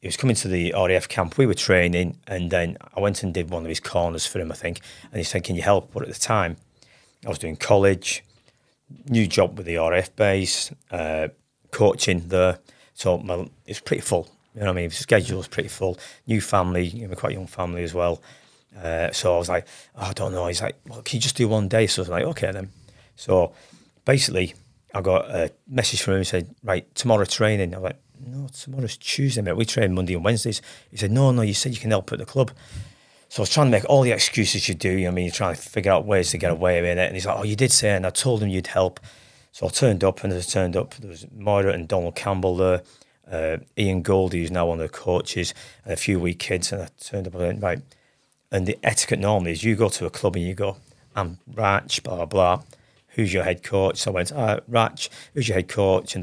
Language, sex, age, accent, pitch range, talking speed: English, male, 40-59, British, 90-115 Hz, 260 wpm